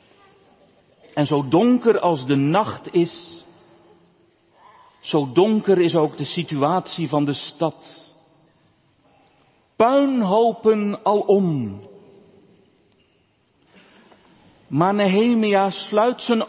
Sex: male